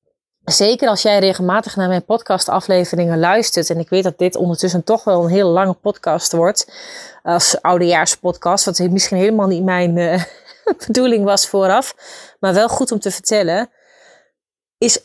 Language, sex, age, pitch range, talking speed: Dutch, female, 30-49, 185-230 Hz, 160 wpm